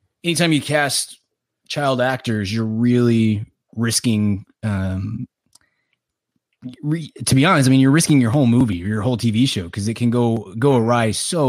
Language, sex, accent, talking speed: English, male, American, 165 wpm